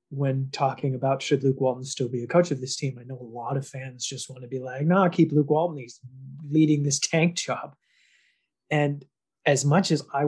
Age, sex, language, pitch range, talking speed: 30-49, male, English, 130-150 Hz, 220 wpm